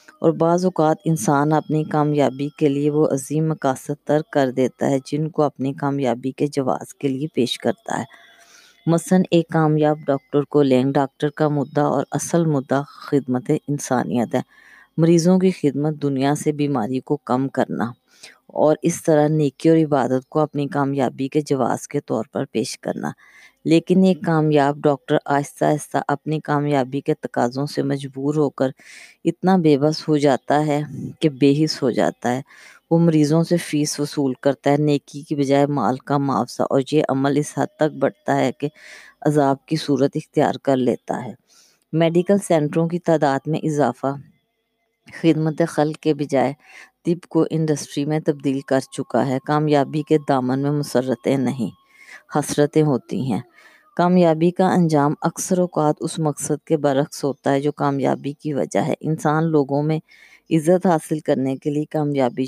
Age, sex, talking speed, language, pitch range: 20-39, female, 165 wpm, Urdu, 140-155 Hz